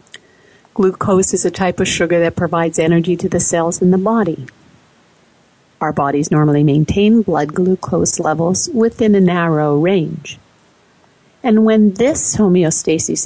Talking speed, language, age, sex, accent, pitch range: 135 wpm, English, 50-69, female, American, 160-195 Hz